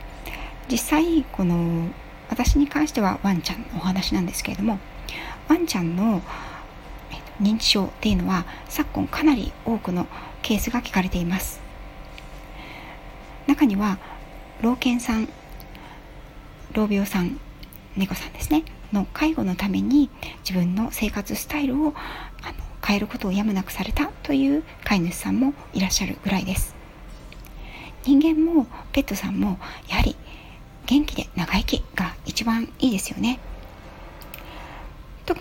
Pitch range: 185-270 Hz